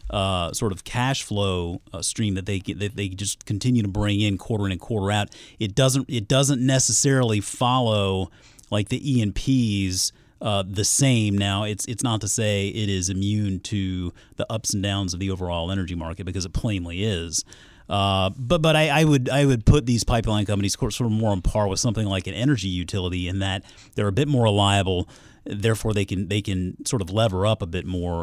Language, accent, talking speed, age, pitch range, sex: English, American, 210 wpm, 30-49, 95-120 Hz, male